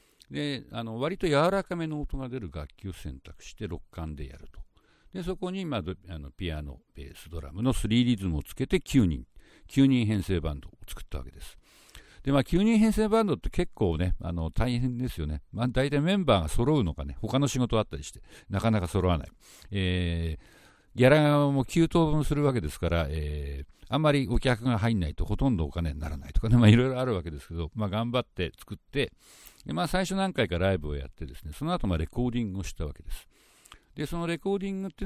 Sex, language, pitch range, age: male, Japanese, 80-125 Hz, 60-79